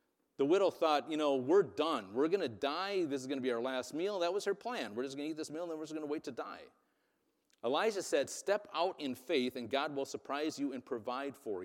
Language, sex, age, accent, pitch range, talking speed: English, male, 40-59, American, 130-185 Hz, 275 wpm